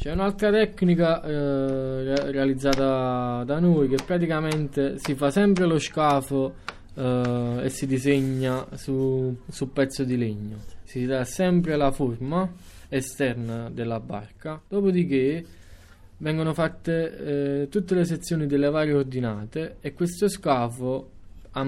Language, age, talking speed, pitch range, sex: Italian, 20-39, 125 wpm, 120-160 Hz, male